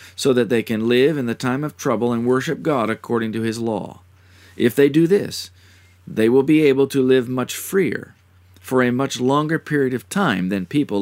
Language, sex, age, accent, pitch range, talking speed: English, male, 40-59, American, 95-135 Hz, 205 wpm